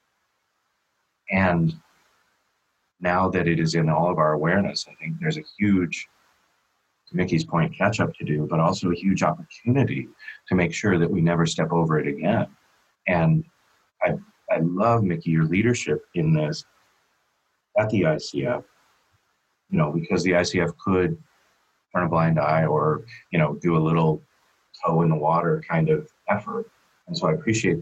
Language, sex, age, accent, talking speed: English, male, 30-49, American, 165 wpm